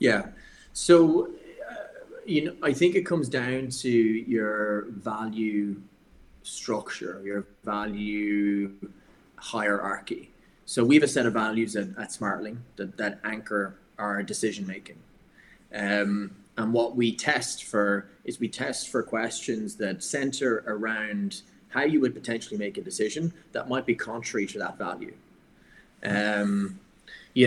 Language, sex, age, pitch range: English, male, 20-39, 105-120 Hz